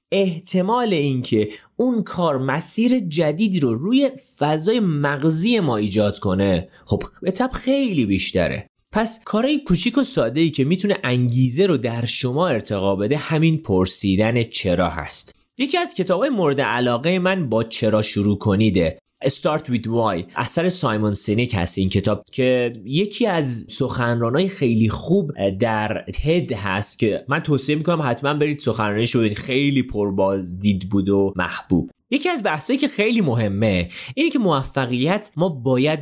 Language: Persian